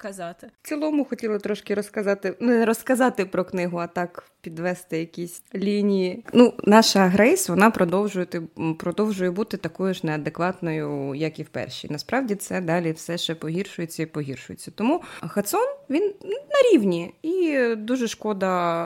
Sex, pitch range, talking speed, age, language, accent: female, 170-215 Hz, 140 wpm, 20-39, Ukrainian, native